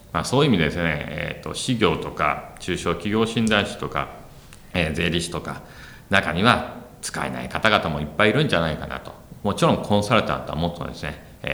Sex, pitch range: male, 75-100 Hz